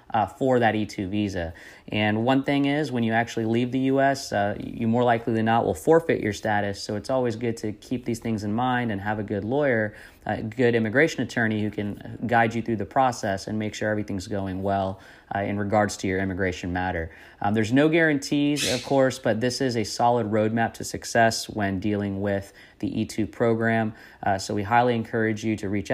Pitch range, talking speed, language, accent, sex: 100-120 Hz, 215 wpm, English, American, male